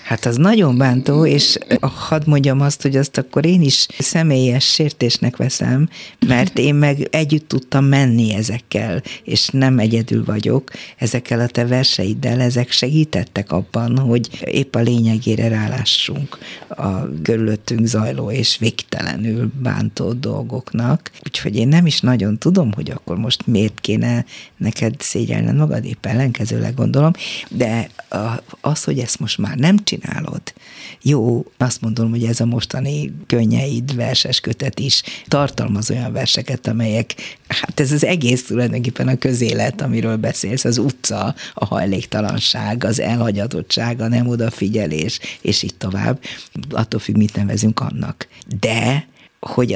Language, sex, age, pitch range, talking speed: Hungarian, female, 50-69, 110-135 Hz, 135 wpm